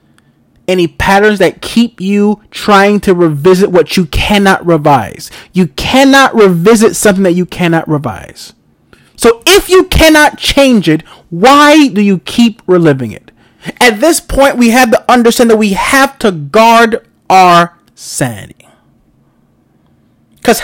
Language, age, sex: English, 30-49, male